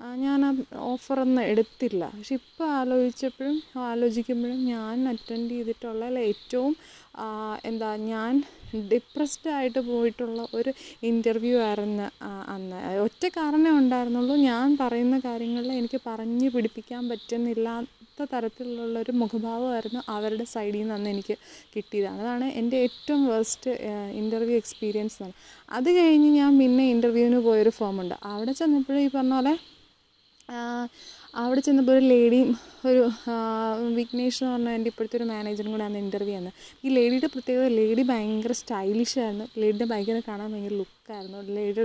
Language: Malayalam